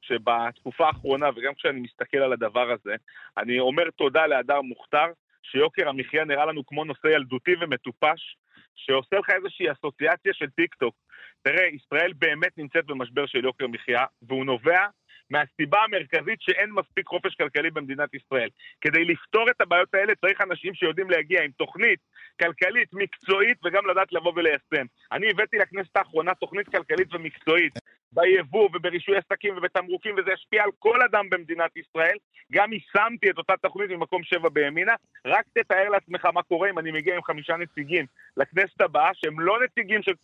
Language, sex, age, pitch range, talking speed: Hebrew, male, 40-59, 155-195 Hz, 150 wpm